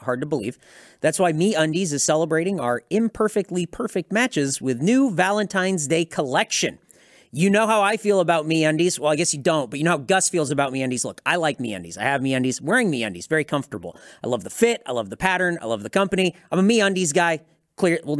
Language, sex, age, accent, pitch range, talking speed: English, male, 30-49, American, 145-220 Hz, 240 wpm